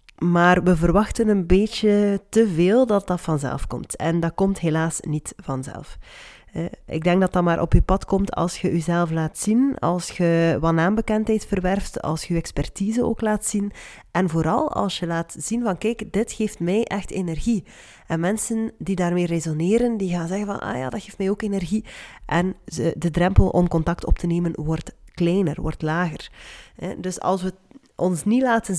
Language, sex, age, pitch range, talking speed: Dutch, female, 20-39, 170-215 Hz, 190 wpm